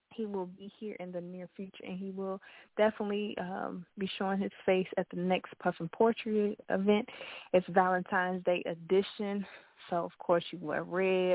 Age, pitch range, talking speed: 20-39, 170-195 Hz, 180 wpm